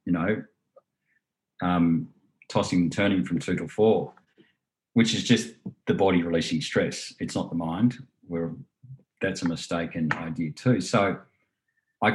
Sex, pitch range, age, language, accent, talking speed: male, 85-105 Hz, 40-59, English, Australian, 140 wpm